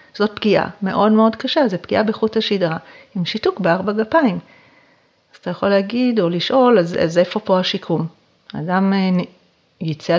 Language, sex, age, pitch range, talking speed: Hebrew, female, 40-59, 180-220 Hz, 155 wpm